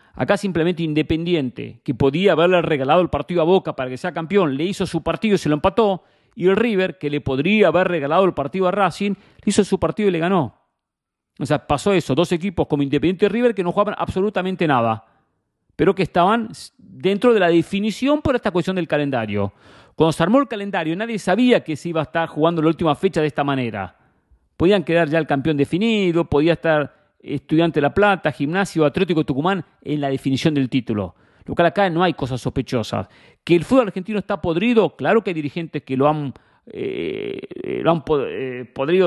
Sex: male